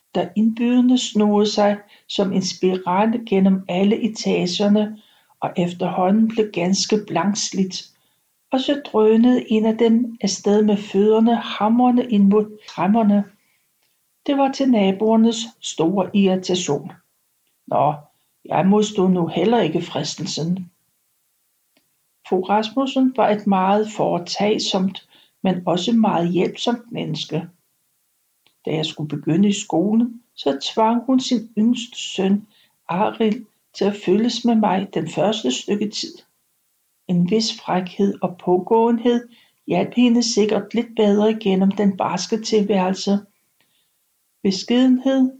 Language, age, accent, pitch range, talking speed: Danish, 60-79, native, 185-220 Hz, 115 wpm